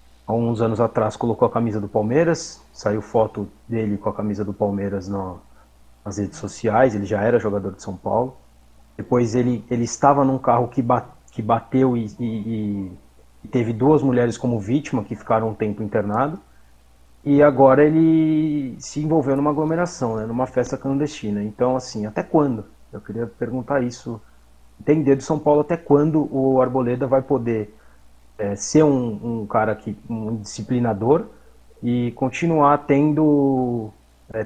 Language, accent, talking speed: Portuguese, Brazilian, 155 wpm